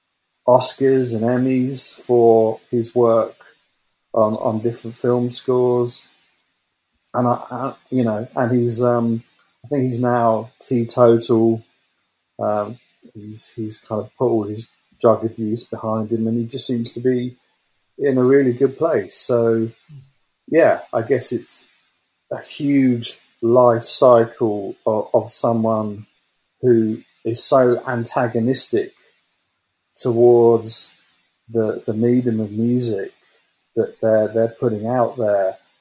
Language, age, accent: English, 40-59, British